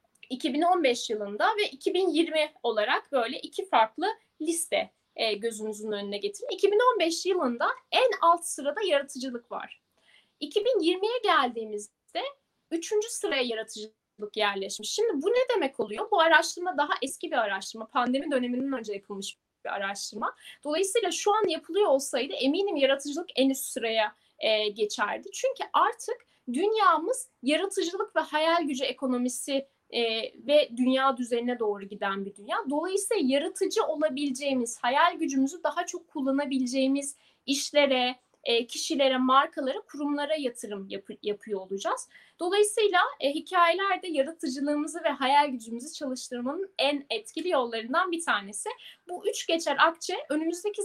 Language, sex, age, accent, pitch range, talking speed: Turkish, female, 10-29, native, 250-365 Hz, 120 wpm